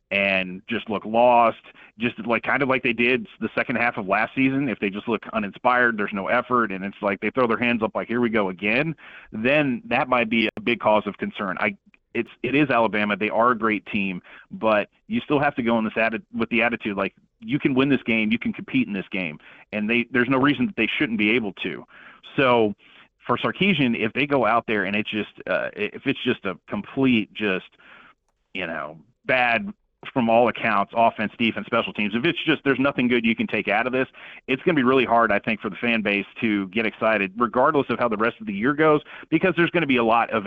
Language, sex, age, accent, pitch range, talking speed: English, male, 30-49, American, 105-130 Hz, 245 wpm